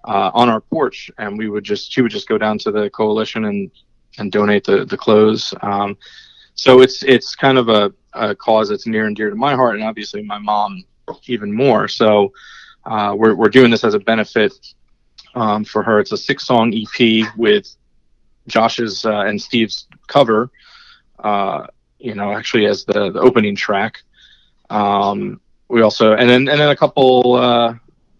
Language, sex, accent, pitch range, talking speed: English, male, American, 105-115 Hz, 185 wpm